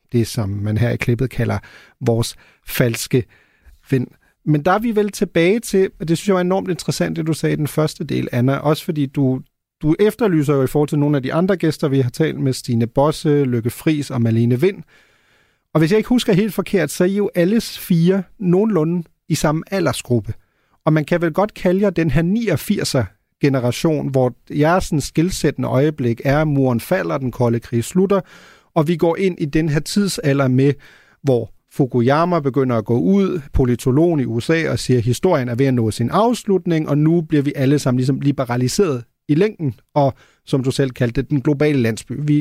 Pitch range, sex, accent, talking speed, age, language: 130-175 Hz, male, native, 205 wpm, 40-59, Danish